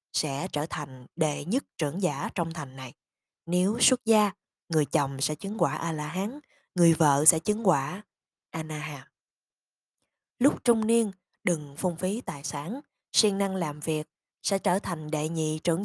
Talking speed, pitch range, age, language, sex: 165 wpm, 150-195 Hz, 20-39, Vietnamese, female